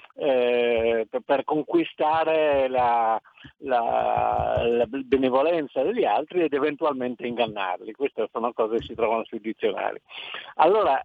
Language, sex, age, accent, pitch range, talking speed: Italian, male, 50-69, native, 115-150 Hz, 115 wpm